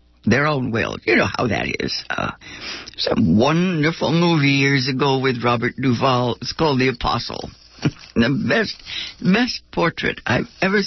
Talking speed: 150 wpm